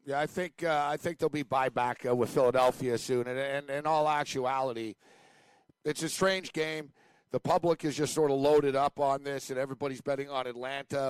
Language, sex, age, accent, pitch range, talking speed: English, male, 50-69, American, 135-165 Hz, 205 wpm